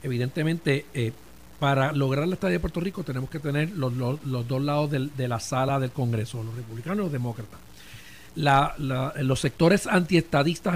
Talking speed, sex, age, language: 160 wpm, male, 50-69, Spanish